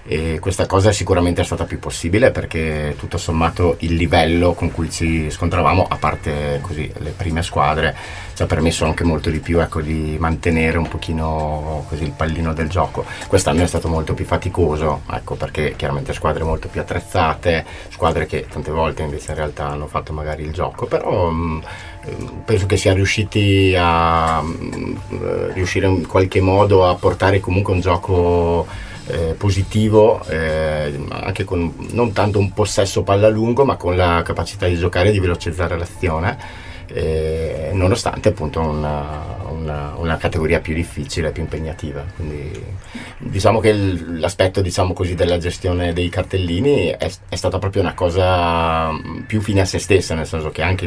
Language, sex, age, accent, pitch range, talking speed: Italian, male, 30-49, native, 80-95 Hz, 165 wpm